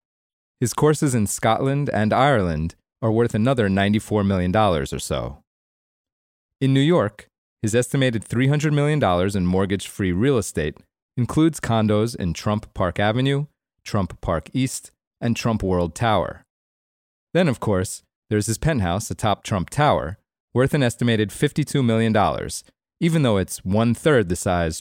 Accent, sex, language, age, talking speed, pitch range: American, male, English, 30-49, 140 wpm, 95-130 Hz